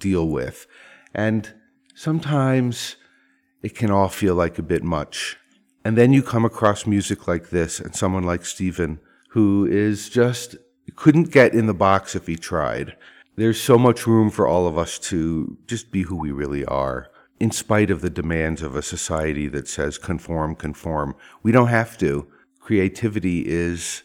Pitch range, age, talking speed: 85-115 Hz, 50-69, 170 wpm